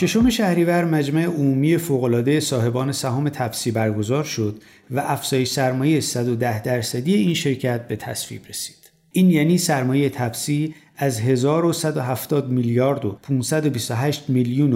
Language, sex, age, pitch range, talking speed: Persian, male, 50-69, 120-160 Hz, 120 wpm